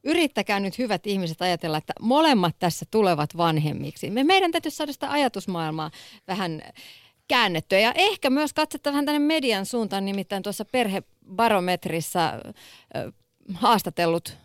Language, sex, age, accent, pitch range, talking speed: Finnish, female, 30-49, native, 170-235 Hz, 130 wpm